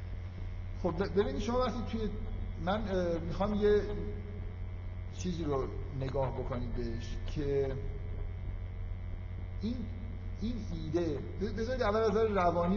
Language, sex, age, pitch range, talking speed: Persian, male, 50-69, 90-135 Hz, 100 wpm